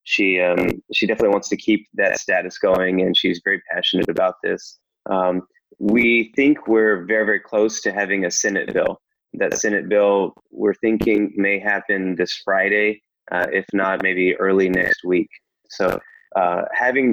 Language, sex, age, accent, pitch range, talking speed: English, male, 20-39, American, 95-115 Hz, 165 wpm